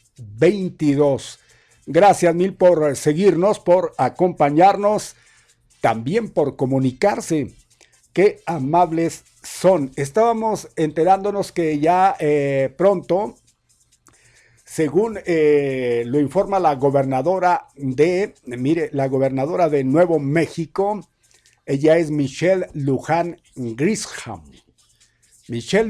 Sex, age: male, 60-79